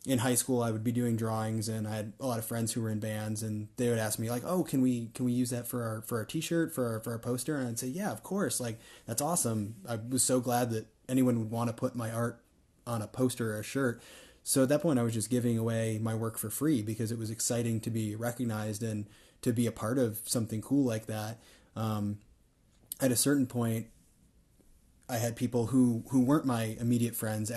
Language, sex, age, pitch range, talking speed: English, male, 20-39, 110-125 Hz, 245 wpm